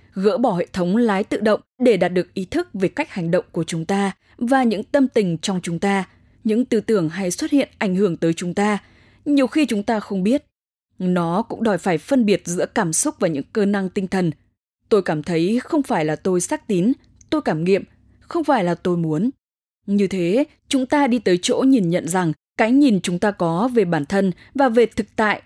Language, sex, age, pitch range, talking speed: English, female, 10-29, 175-235 Hz, 230 wpm